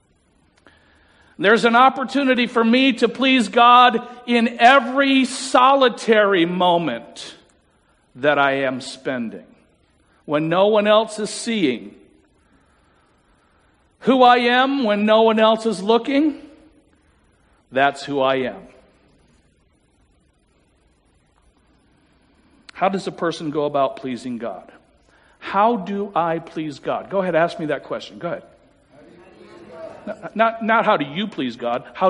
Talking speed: 120 wpm